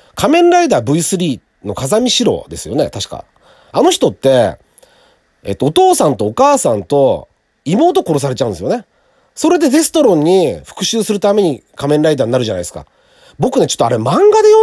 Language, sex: Japanese, male